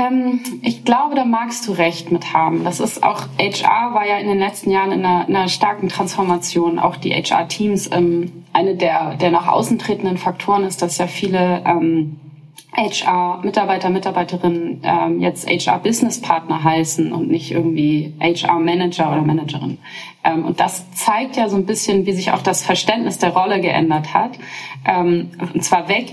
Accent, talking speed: German, 160 wpm